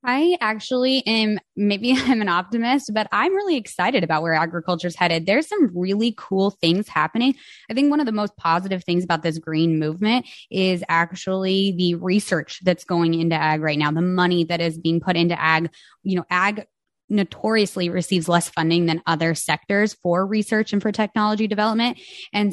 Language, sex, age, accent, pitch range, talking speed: English, female, 20-39, American, 170-215 Hz, 185 wpm